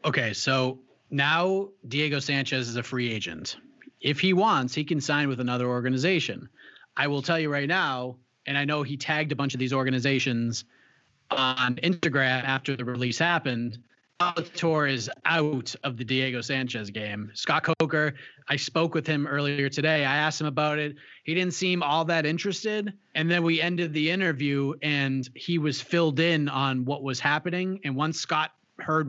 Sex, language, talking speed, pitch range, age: male, English, 180 wpm, 130-175 Hz, 30-49